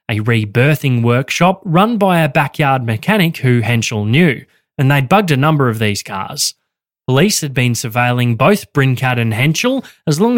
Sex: male